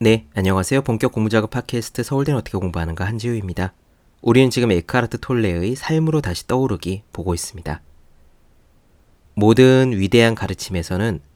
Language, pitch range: Korean, 85-130 Hz